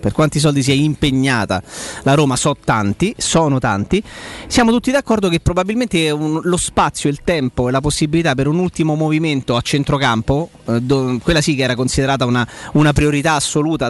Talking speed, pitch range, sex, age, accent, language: 170 wpm, 135-165 Hz, male, 30-49, native, Italian